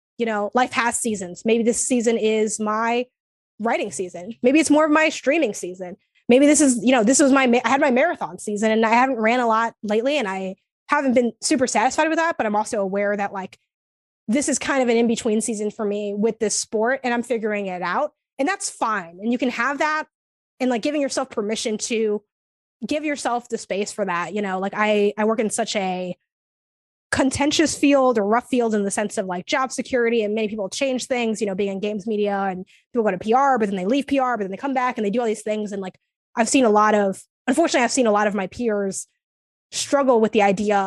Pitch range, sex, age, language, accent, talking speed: 210-255 Hz, female, 20-39, English, American, 240 wpm